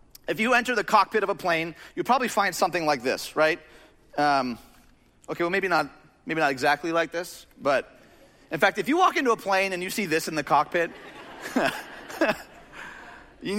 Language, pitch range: English, 165-235 Hz